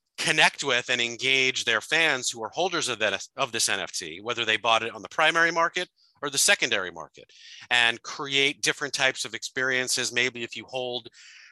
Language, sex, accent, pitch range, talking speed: English, male, American, 120-155 Hz, 180 wpm